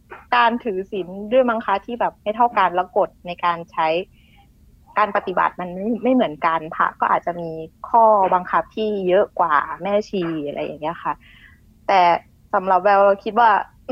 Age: 20-39